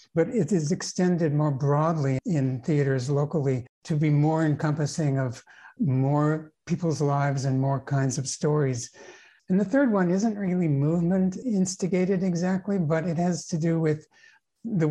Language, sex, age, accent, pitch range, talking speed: English, male, 60-79, American, 145-175 Hz, 155 wpm